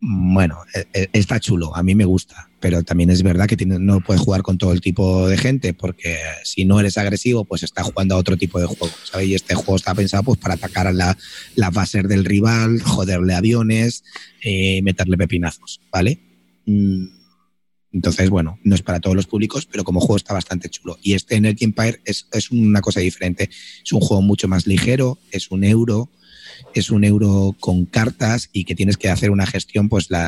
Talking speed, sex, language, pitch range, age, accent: 200 wpm, male, Spanish, 90-105 Hz, 30-49, Spanish